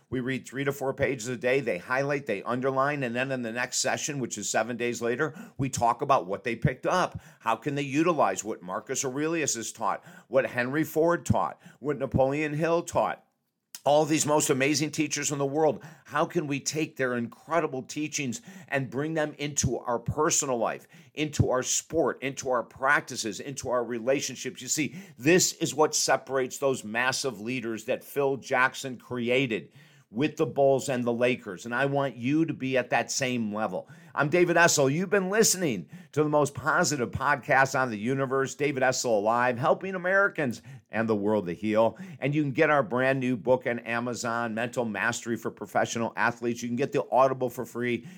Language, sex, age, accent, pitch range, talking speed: English, male, 50-69, American, 120-155 Hz, 190 wpm